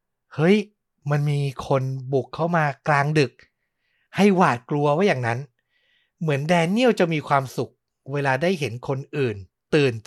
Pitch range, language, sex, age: 135-185 Hz, Thai, male, 60-79